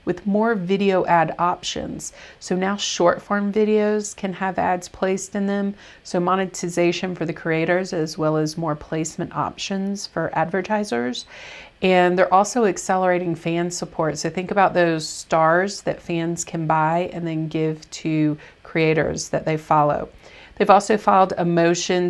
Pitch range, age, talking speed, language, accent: 160-200 Hz, 40-59, 155 wpm, English, American